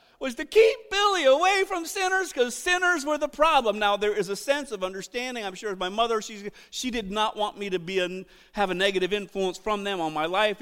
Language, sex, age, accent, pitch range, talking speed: English, male, 40-59, American, 205-310 Hz, 230 wpm